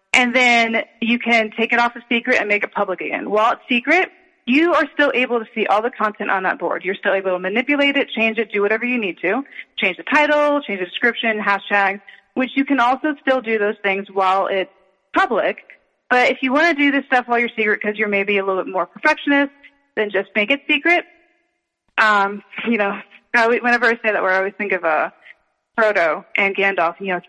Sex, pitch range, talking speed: female, 205-280 Hz, 235 wpm